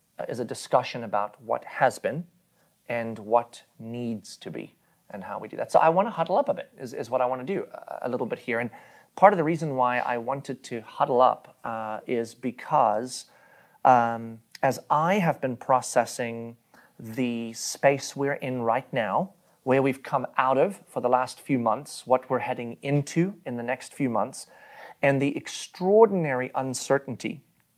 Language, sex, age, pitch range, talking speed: English, male, 30-49, 115-140 Hz, 185 wpm